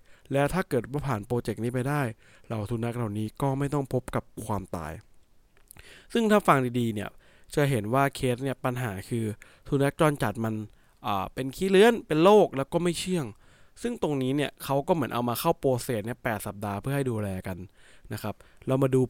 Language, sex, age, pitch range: English, male, 20-39, 115-155 Hz